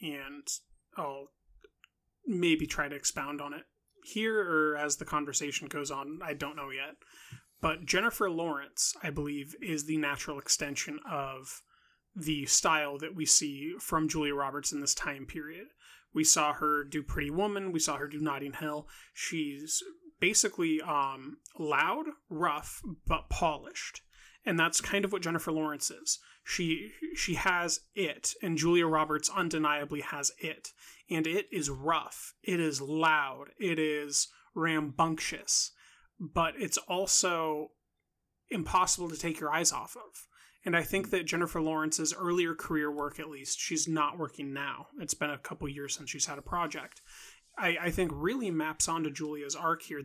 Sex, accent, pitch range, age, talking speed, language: male, American, 145-175 Hz, 30-49, 160 wpm, English